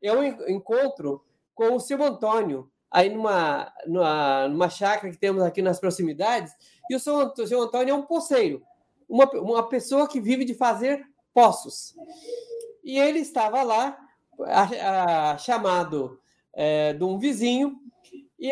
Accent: Brazilian